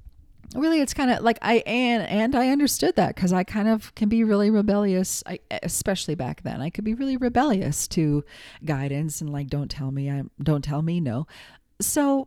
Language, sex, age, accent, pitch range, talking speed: English, female, 40-59, American, 155-220 Hz, 200 wpm